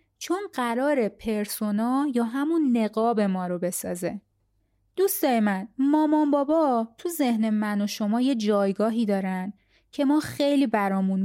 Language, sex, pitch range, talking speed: Persian, female, 200-275 Hz, 135 wpm